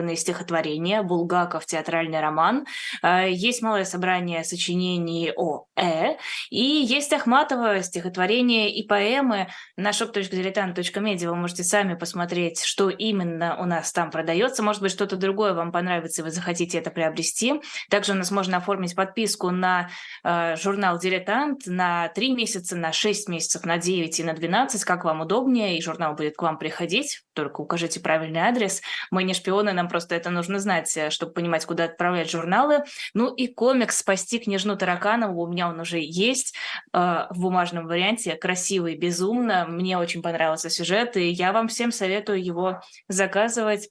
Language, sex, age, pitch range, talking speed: Russian, female, 20-39, 170-210 Hz, 155 wpm